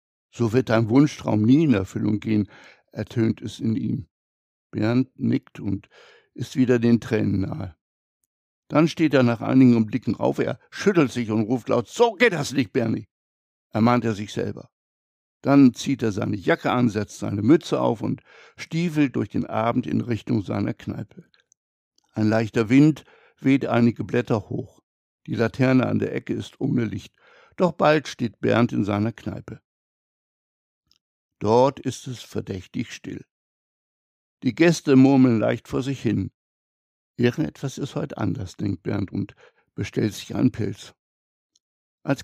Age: 60-79